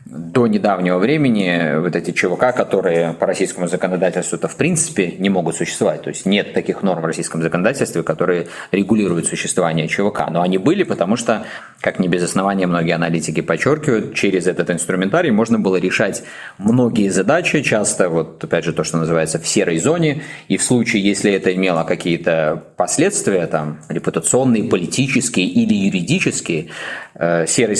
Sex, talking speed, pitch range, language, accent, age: male, 155 wpm, 80-100 Hz, Russian, native, 20-39